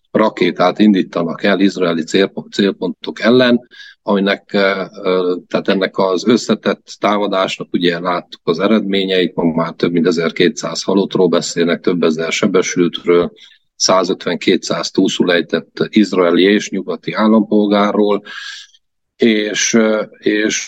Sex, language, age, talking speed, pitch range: male, Hungarian, 40-59, 100 wpm, 95-115 Hz